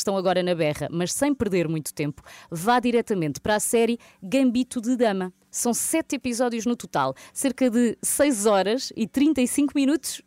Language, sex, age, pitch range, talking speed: Portuguese, female, 20-39, 175-245 Hz, 170 wpm